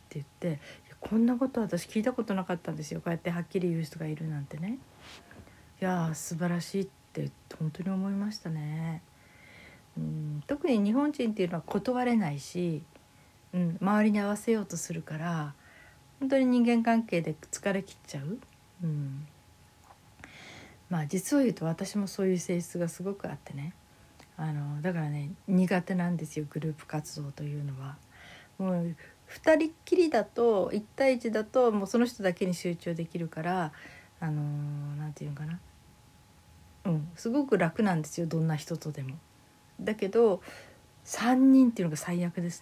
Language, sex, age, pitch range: Japanese, female, 60-79, 160-215 Hz